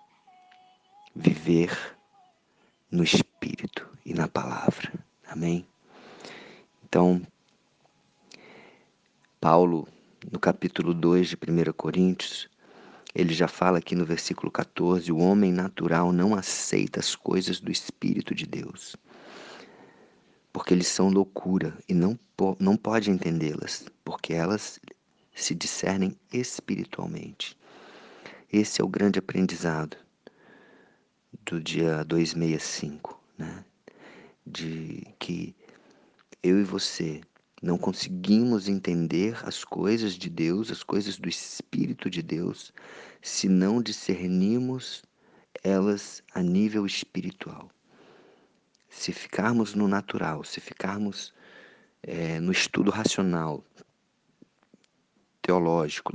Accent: Brazilian